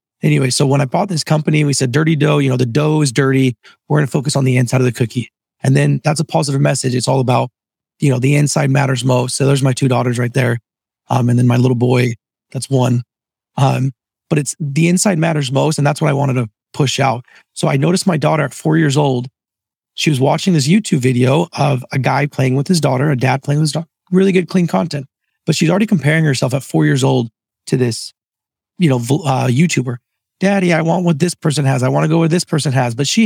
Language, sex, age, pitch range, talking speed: English, male, 30-49, 130-155 Hz, 245 wpm